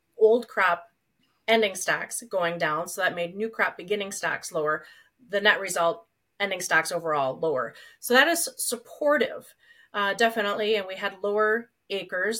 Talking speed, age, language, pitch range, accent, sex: 155 wpm, 30-49, English, 175-220 Hz, American, female